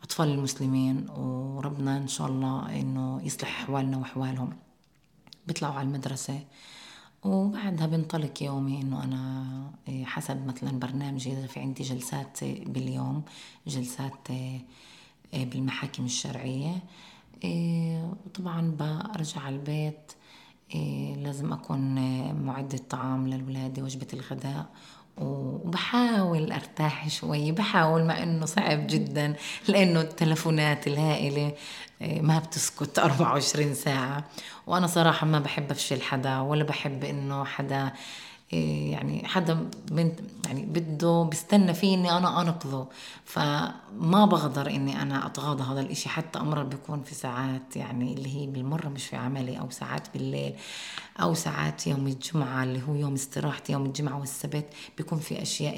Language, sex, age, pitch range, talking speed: Arabic, female, 20-39, 130-160 Hz, 120 wpm